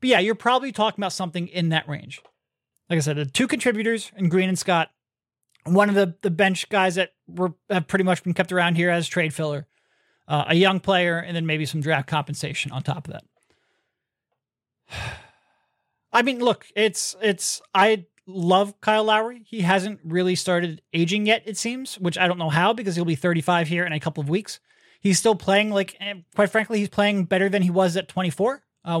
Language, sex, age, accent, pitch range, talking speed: English, male, 30-49, American, 170-210 Hz, 210 wpm